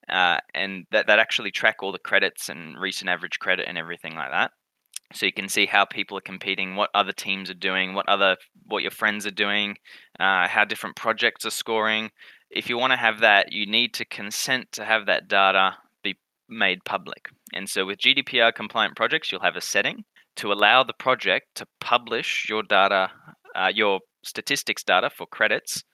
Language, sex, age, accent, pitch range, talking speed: English, male, 20-39, Australian, 95-110 Hz, 195 wpm